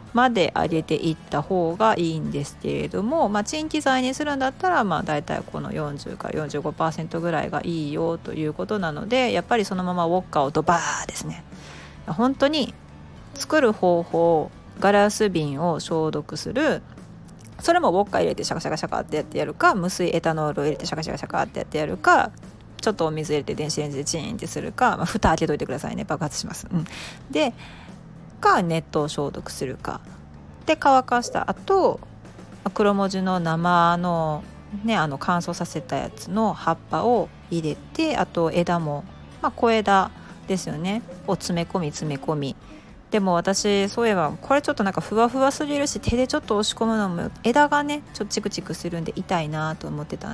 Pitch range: 160-225 Hz